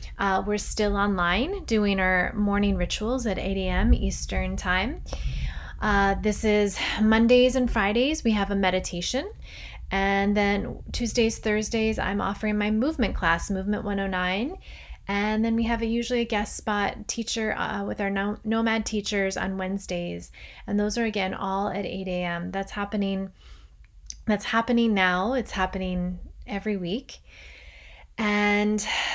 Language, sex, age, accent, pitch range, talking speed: English, female, 20-39, American, 185-215 Hz, 135 wpm